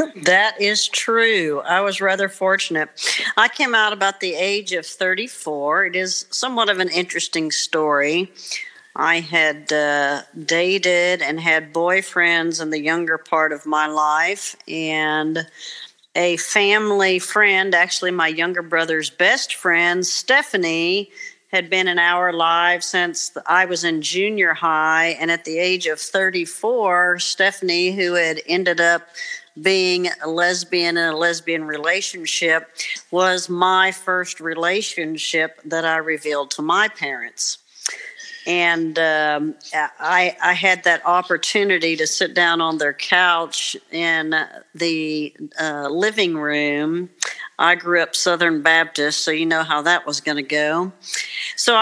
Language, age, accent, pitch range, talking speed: English, 50-69, American, 160-185 Hz, 140 wpm